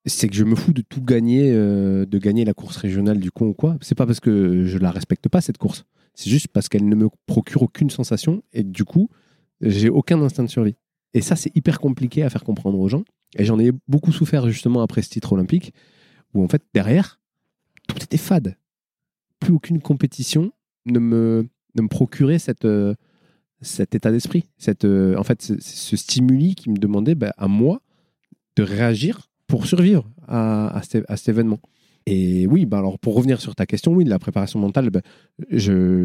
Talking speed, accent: 210 wpm, French